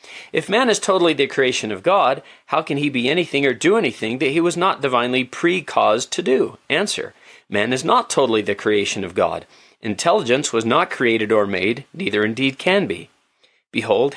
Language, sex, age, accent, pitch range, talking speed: English, male, 40-59, American, 115-160 Hz, 185 wpm